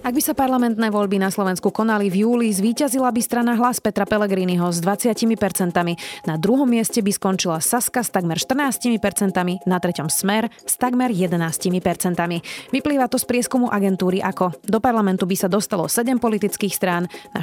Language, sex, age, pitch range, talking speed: Slovak, female, 30-49, 180-230 Hz, 165 wpm